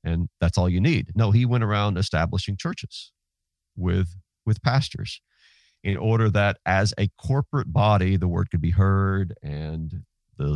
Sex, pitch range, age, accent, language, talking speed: male, 90-115 Hz, 50-69, American, English, 160 wpm